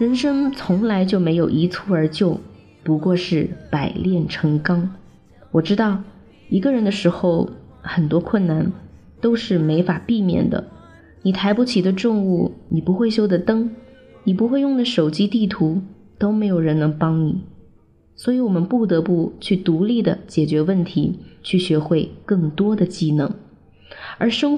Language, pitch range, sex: Chinese, 165-210 Hz, female